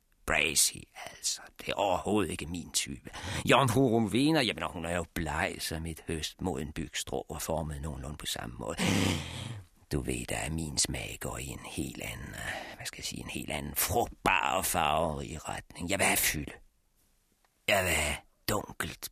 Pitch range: 80-135 Hz